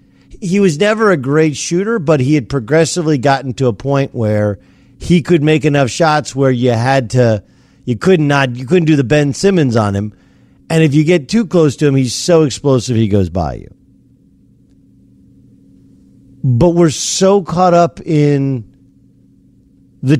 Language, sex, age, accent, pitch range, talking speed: English, male, 50-69, American, 110-175 Hz, 170 wpm